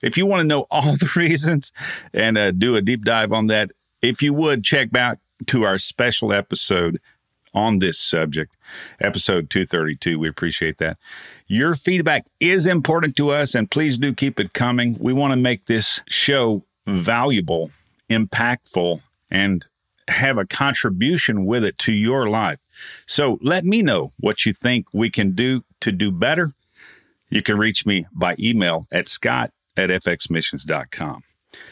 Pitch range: 100-140 Hz